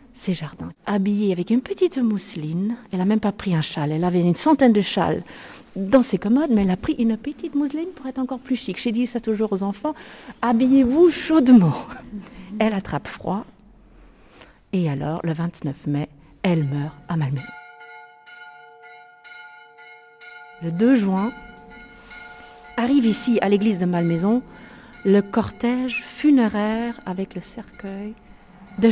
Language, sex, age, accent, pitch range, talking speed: French, female, 50-69, French, 175-235 Hz, 145 wpm